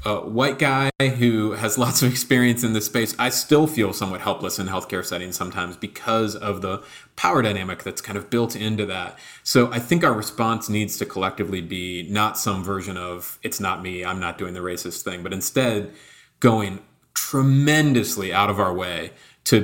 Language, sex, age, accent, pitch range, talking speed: English, male, 30-49, American, 95-115 Hz, 190 wpm